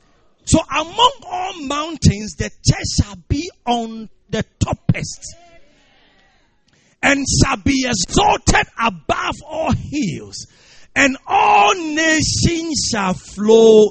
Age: 40-59